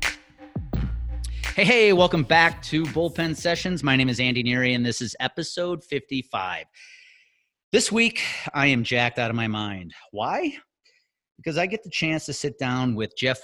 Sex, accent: male, American